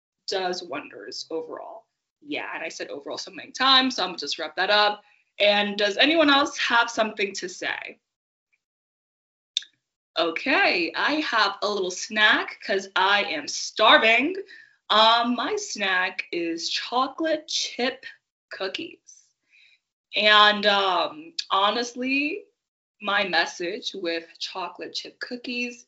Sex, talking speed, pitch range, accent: female, 120 wpm, 200-315 Hz, American